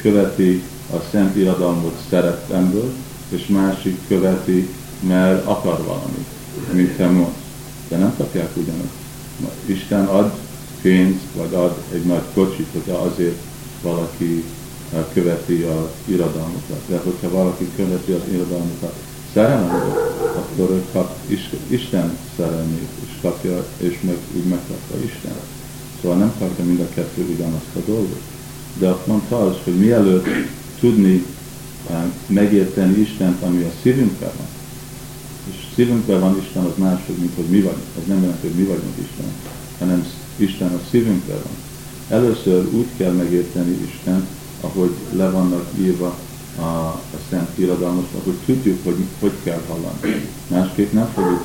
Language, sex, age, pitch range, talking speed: Hungarian, male, 50-69, 90-100 Hz, 135 wpm